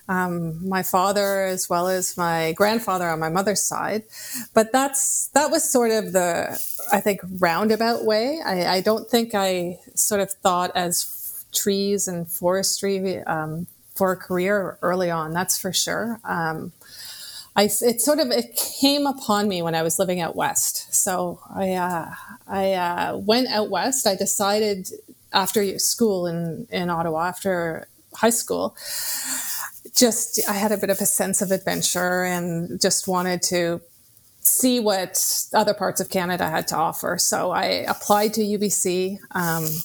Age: 30-49